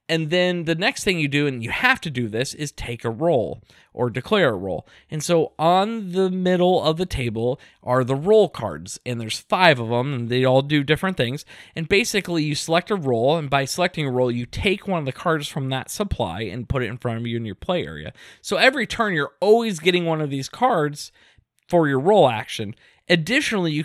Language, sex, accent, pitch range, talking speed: English, male, American, 125-175 Hz, 230 wpm